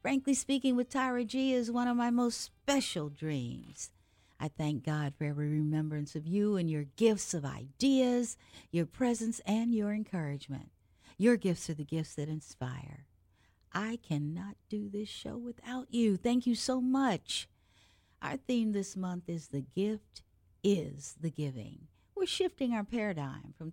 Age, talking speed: 50-69, 160 wpm